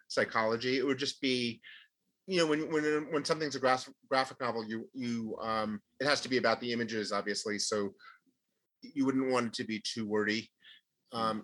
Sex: male